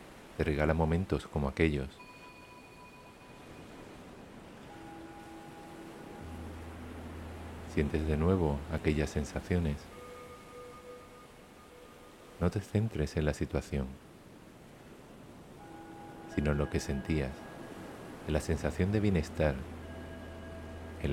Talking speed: 75 wpm